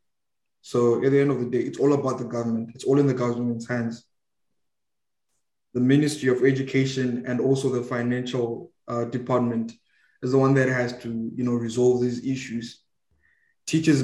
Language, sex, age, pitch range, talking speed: English, male, 20-39, 115-130 Hz, 170 wpm